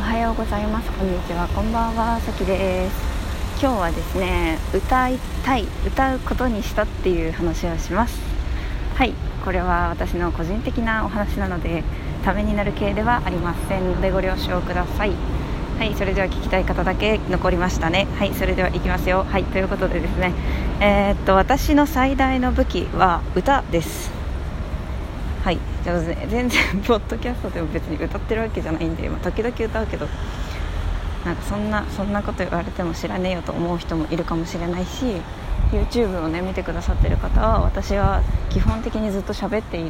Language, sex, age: Japanese, female, 20-39